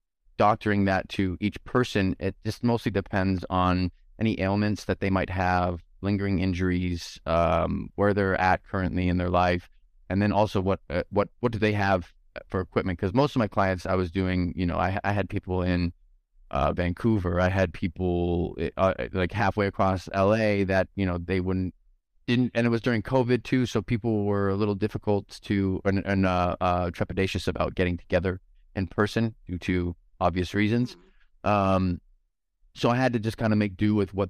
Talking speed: 190 wpm